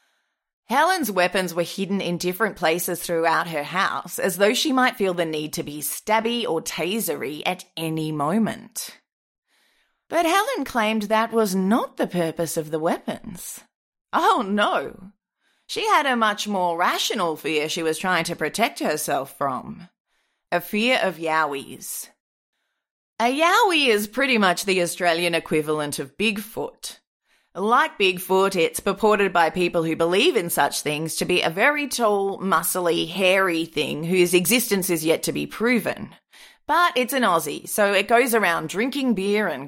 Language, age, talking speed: English, 30-49, 155 wpm